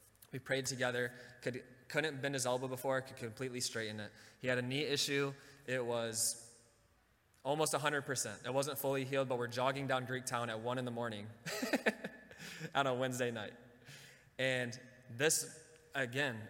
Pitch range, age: 120-135 Hz, 20-39